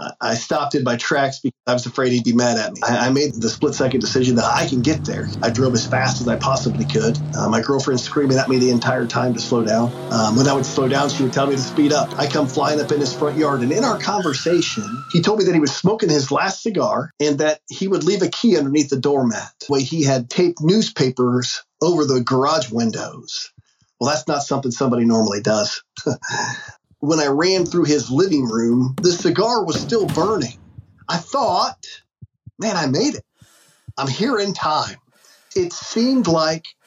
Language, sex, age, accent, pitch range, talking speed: English, male, 40-59, American, 120-150 Hz, 210 wpm